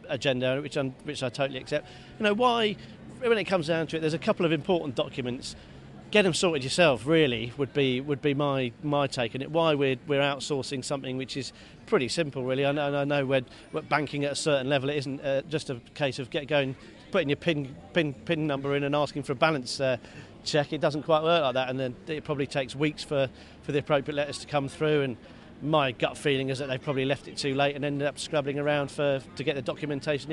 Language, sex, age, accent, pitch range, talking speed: English, male, 40-59, British, 130-155 Hz, 240 wpm